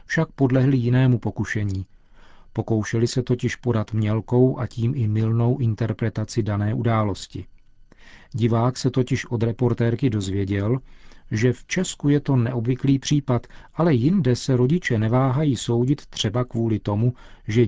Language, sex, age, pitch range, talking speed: Czech, male, 40-59, 110-130 Hz, 130 wpm